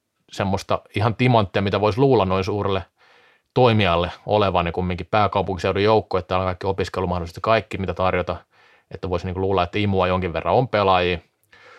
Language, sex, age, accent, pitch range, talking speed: Finnish, male, 30-49, native, 95-120 Hz, 175 wpm